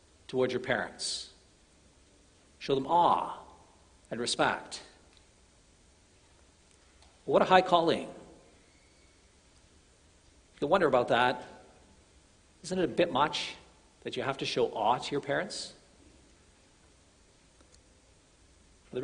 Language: English